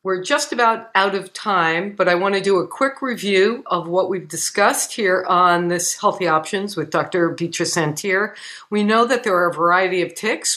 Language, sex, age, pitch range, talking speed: English, female, 50-69, 185-245 Hz, 200 wpm